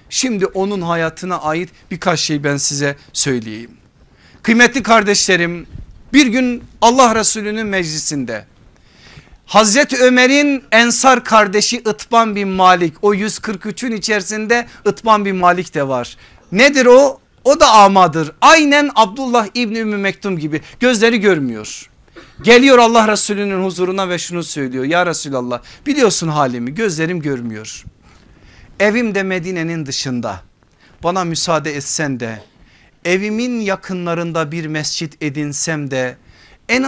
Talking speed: 115 wpm